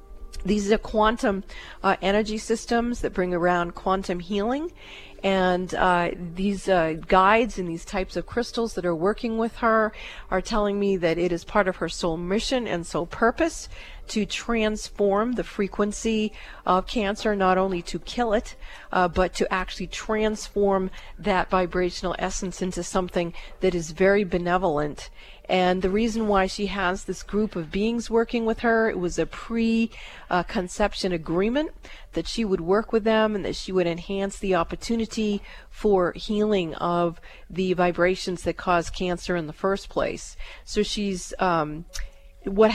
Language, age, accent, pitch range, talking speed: English, 40-59, American, 180-215 Hz, 160 wpm